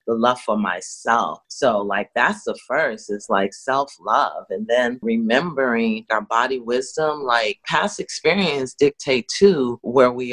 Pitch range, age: 105-130 Hz, 30-49